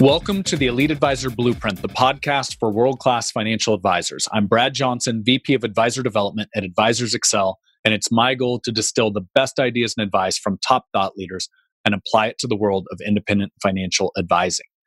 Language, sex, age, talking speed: English, male, 30-49, 190 wpm